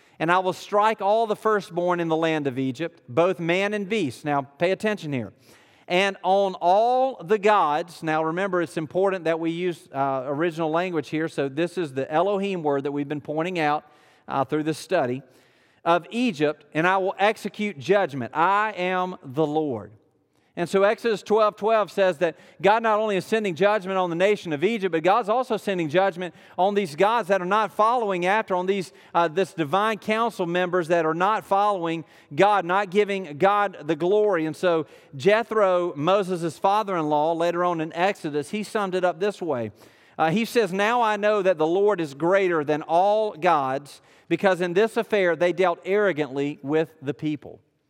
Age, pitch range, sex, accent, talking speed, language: 40-59, 160-200 Hz, male, American, 185 wpm, English